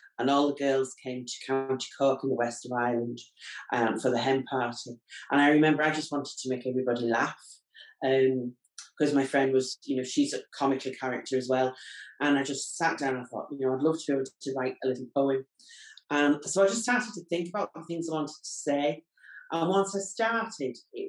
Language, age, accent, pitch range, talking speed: English, 40-59, British, 130-160 Hz, 225 wpm